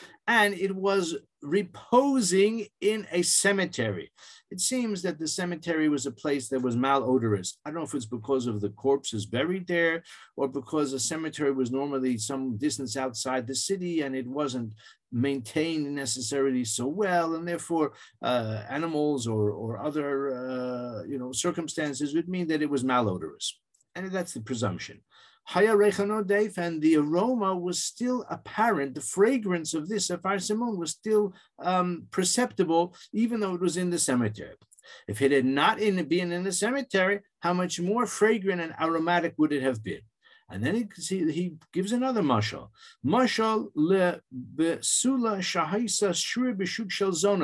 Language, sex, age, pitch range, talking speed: English, male, 50-69, 140-205 Hz, 145 wpm